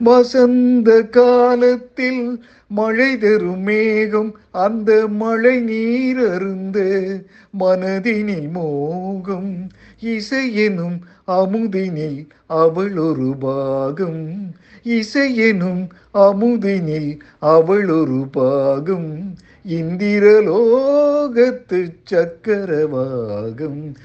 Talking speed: 50 wpm